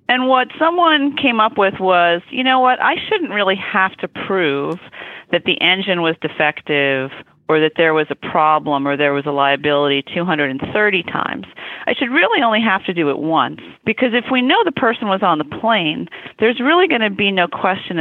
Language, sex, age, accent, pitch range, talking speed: English, female, 40-59, American, 155-215 Hz, 200 wpm